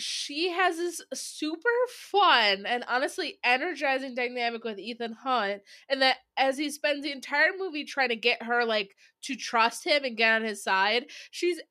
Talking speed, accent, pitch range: 175 wpm, American, 225-290 Hz